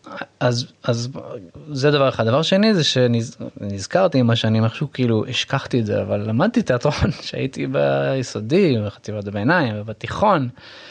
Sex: male